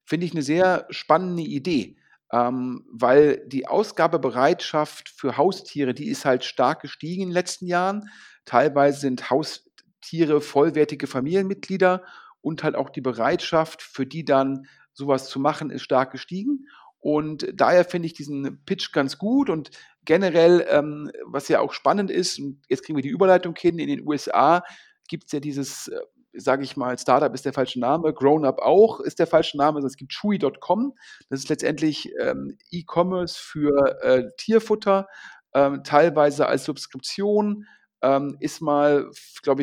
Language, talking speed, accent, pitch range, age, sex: German, 155 wpm, German, 140-180 Hz, 40-59, male